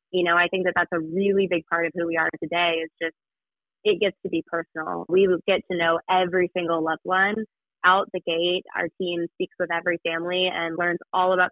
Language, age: English, 20-39